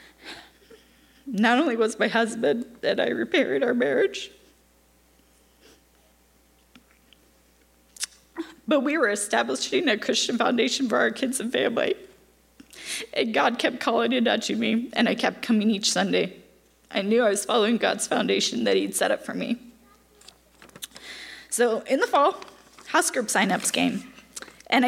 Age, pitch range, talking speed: 10-29, 195-245 Hz, 135 wpm